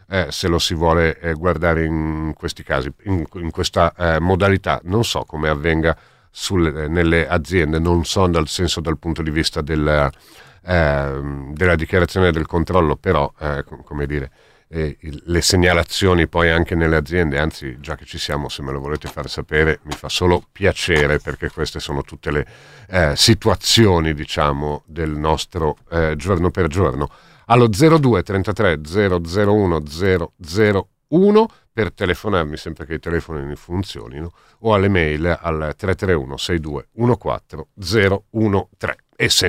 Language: Italian